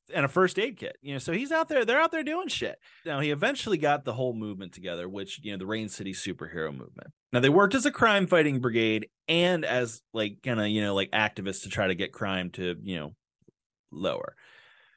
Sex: male